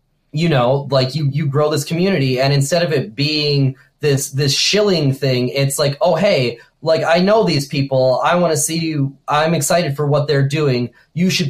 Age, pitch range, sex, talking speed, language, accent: 20-39, 135-165 Hz, male, 205 wpm, English, American